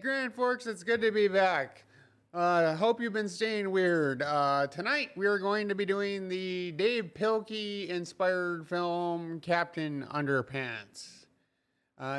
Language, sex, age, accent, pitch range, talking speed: English, male, 30-49, American, 140-190 Hz, 150 wpm